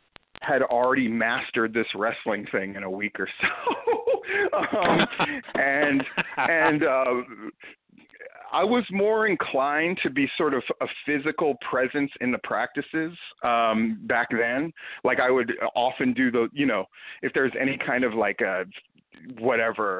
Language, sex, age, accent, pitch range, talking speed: English, male, 40-59, American, 115-185 Hz, 145 wpm